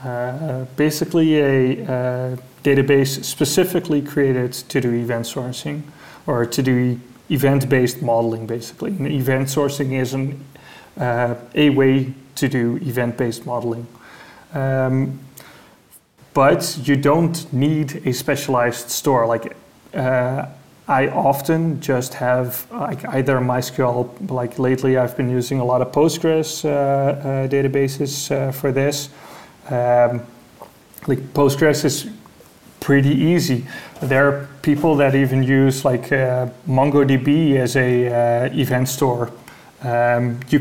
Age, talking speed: 30-49, 120 wpm